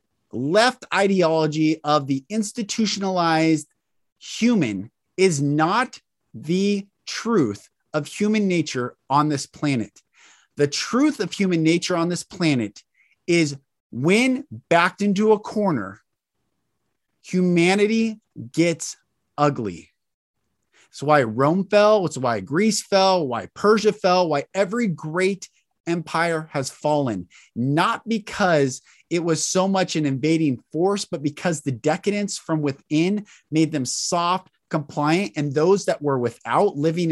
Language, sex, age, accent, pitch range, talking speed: English, male, 30-49, American, 150-195 Hz, 120 wpm